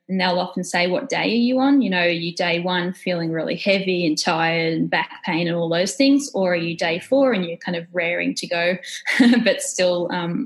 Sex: female